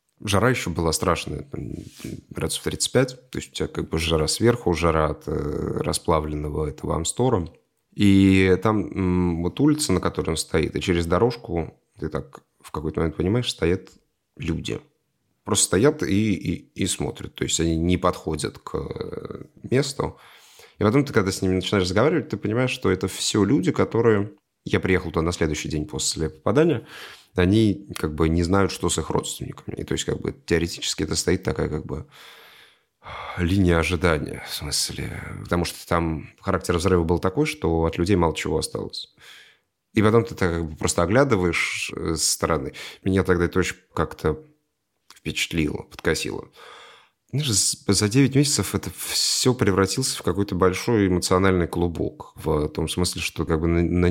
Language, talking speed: Russian, 160 wpm